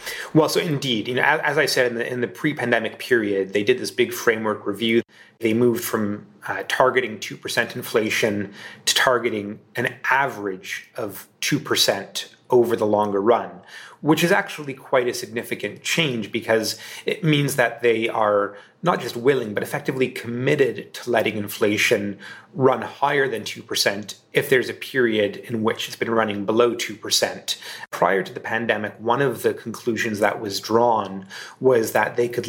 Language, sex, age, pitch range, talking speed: English, male, 30-49, 105-130 Hz, 160 wpm